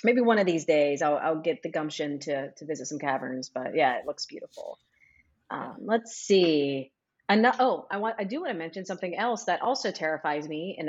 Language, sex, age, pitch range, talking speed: English, female, 30-49, 155-205 Hz, 220 wpm